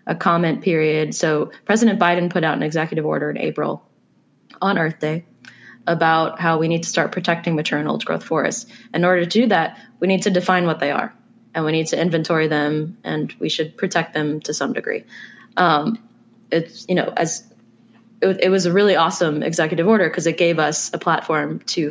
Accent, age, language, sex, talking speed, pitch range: American, 20-39, English, female, 205 wpm, 160-200 Hz